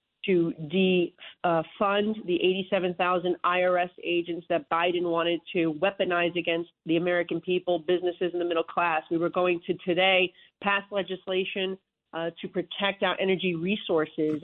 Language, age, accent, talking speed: English, 40-59, American, 140 wpm